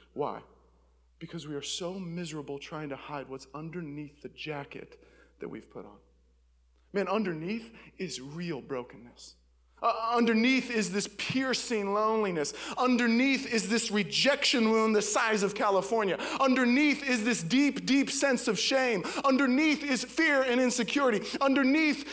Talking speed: 140 wpm